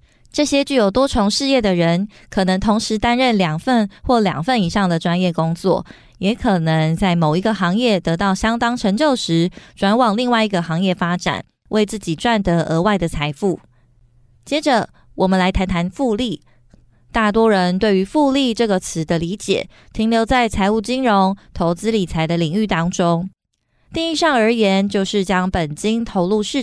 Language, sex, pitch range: Chinese, female, 175-225 Hz